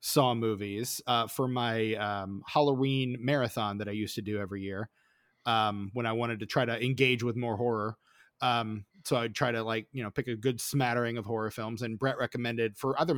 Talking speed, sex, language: 210 wpm, male, English